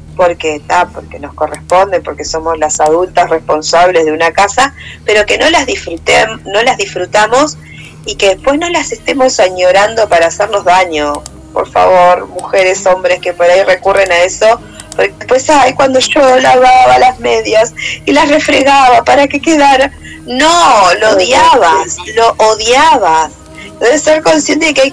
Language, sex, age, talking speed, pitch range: Spanish, female, 20-39, 155 wpm, 180-260 Hz